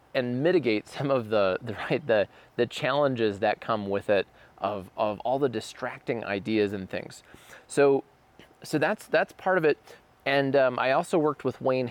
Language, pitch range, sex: English, 105-130 Hz, male